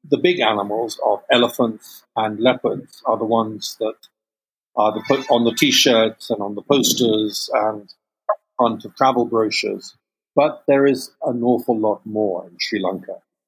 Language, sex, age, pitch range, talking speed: English, male, 50-69, 105-125 Hz, 155 wpm